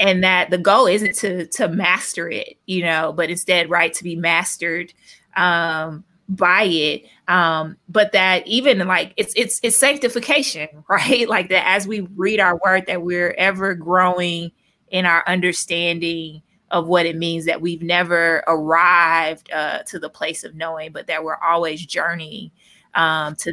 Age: 20-39